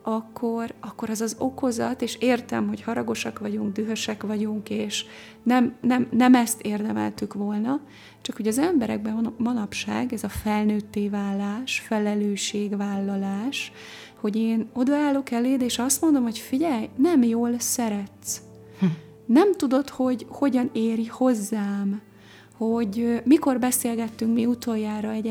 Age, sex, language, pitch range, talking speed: 30-49, female, Hungarian, 205-235 Hz, 130 wpm